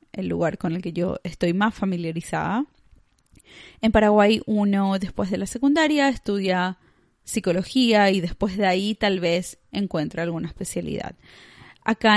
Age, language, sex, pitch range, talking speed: 20-39, Spanish, female, 180-215 Hz, 140 wpm